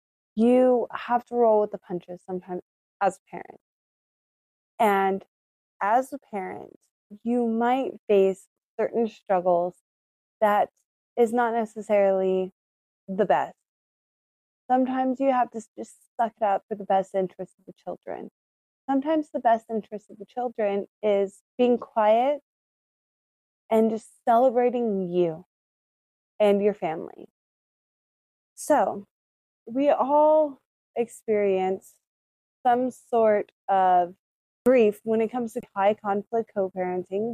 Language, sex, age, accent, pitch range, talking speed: English, female, 20-39, American, 195-235 Hz, 115 wpm